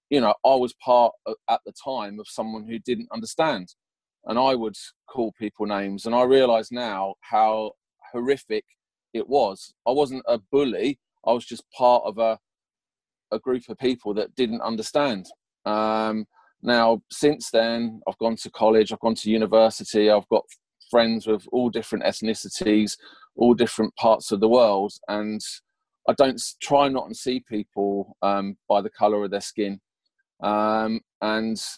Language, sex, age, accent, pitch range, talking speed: English, male, 30-49, British, 105-125 Hz, 160 wpm